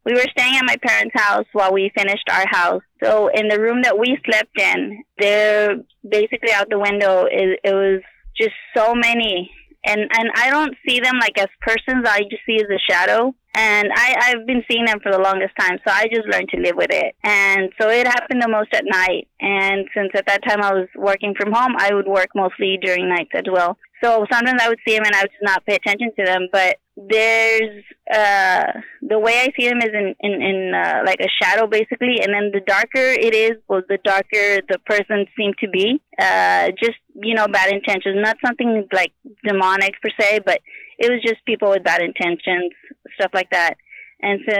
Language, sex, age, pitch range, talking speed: English, female, 20-39, 195-225 Hz, 215 wpm